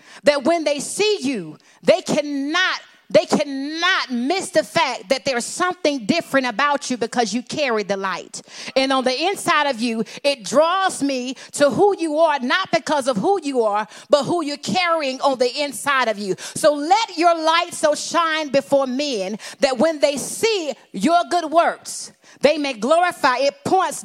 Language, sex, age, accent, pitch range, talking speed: English, female, 40-59, American, 245-315 Hz, 175 wpm